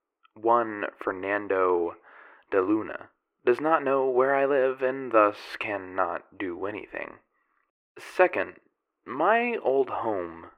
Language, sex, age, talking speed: English, male, 20-39, 110 wpm